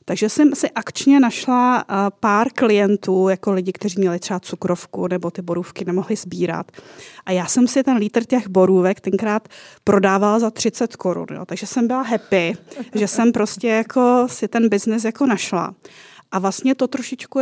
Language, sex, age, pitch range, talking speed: Czech, female, 30-49, 195-240 Hz, 170 wpm